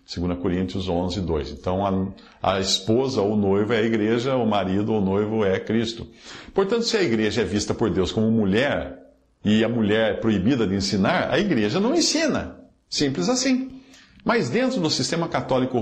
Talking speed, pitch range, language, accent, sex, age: 180 wpm, 105-165 Hz, Portuguese, Brazilian, male, 50-69